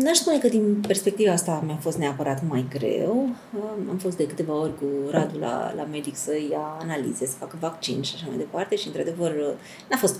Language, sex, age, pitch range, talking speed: Romanian, female, 30-49, 155-210 Hz, 205 wpm